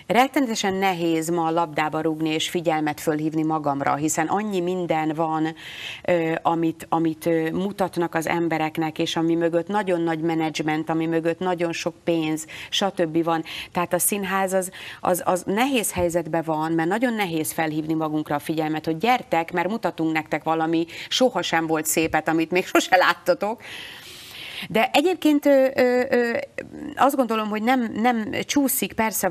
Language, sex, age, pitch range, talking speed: Hungarian, female, 30-49, 160-195 Hz, 150 wpm